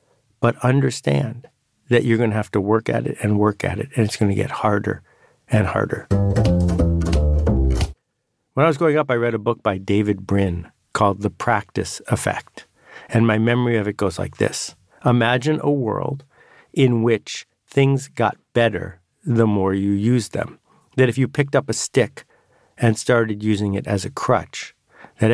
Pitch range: 105-125 Hz